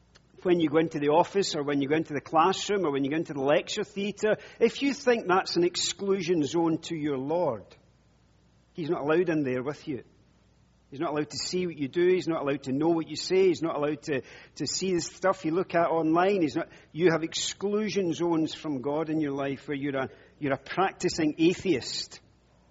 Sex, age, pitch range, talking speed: male, 40-59, 140-195 Hz, 215 wpm